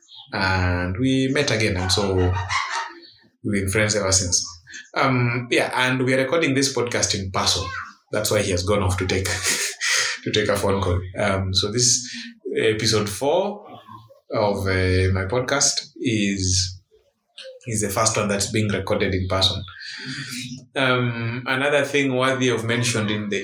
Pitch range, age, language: 95-125 Hz, 20-39, English